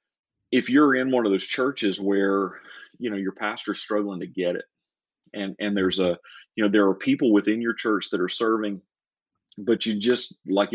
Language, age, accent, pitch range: English, 30-49, American, 95-105 Hz